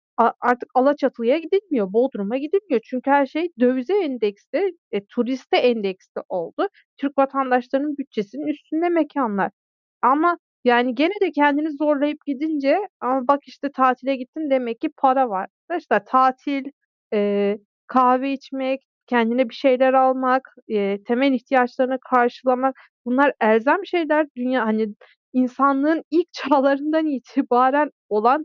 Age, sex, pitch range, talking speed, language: 40-59, female, 240-290 Hz, 125 wpm, Turkish